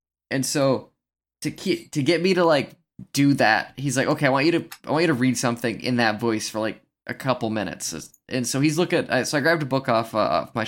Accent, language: American, English